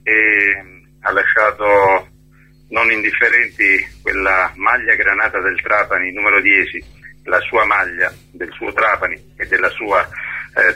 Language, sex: Italian, male